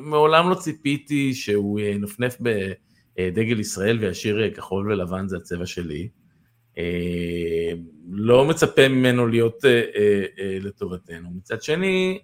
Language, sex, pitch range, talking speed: Hebrew, male, 105-130 Hz, 100 wpm